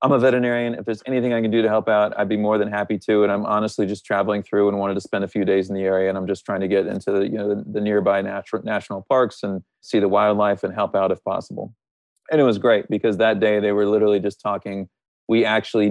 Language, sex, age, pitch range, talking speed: English, male, 30-49, 100-110 Hz, 275 wpm